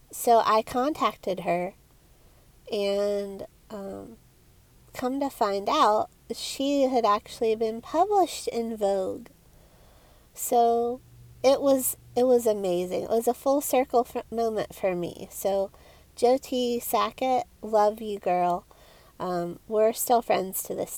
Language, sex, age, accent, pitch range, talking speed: English, female, 30-49, American, 200-235 Hz, 125 wpm